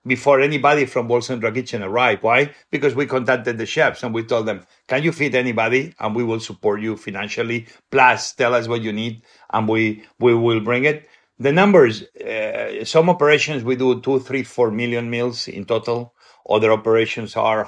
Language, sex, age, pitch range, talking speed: English, male, 50-69, 110-130 Hz, 190 wpm